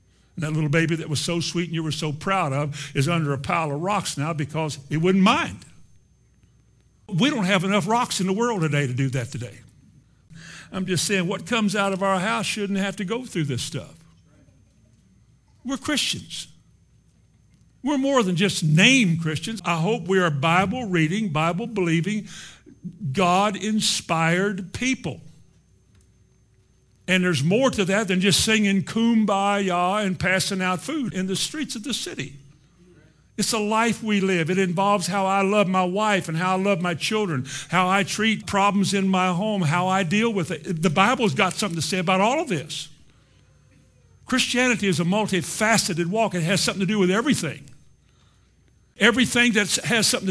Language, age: English, 60-79